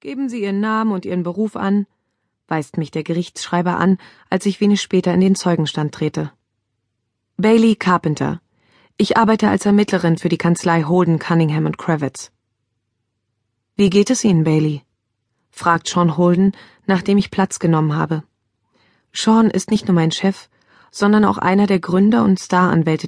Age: 30-49